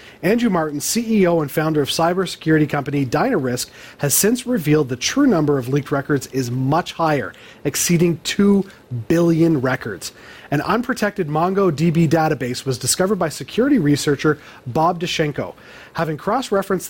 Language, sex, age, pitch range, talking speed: English, male, 30-49, 135-170 Hz, 135 wpm